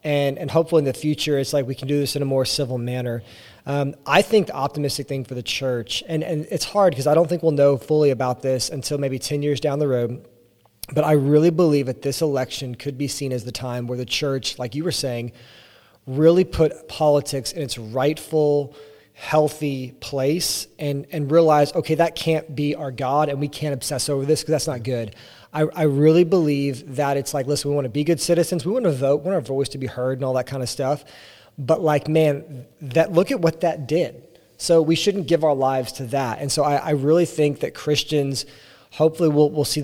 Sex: male